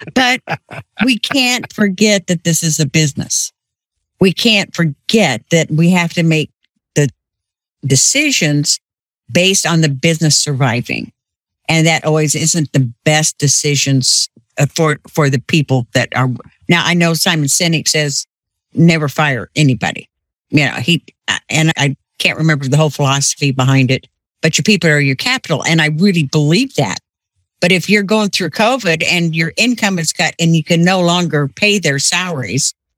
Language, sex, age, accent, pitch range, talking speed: English, female, 60-79, American, 140-180 Hz, 160 wpm